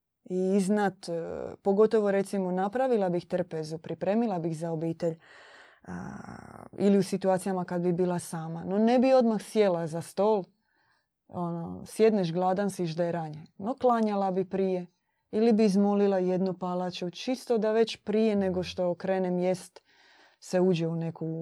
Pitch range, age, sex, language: 170-205 Hz, 20-39, female, Croatian